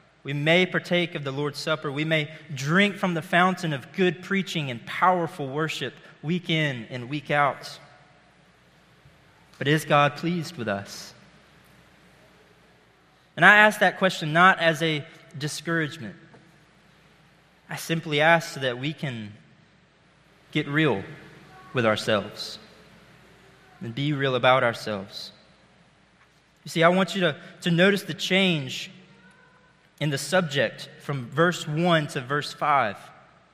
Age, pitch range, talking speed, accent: 20-39, 145-175 Hz, 130 wpm, American